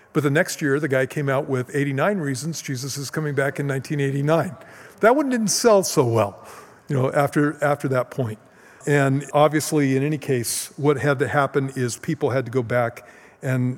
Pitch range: 130-155 Hz